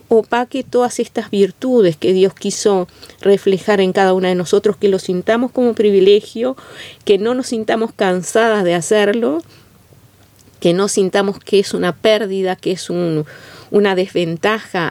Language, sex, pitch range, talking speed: Spanish, female, 180-210 Hz, 145 wpm